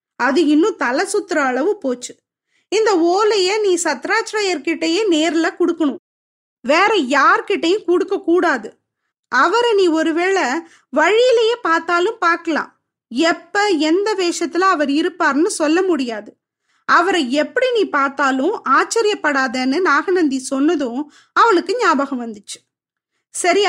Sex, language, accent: female, Tamil, native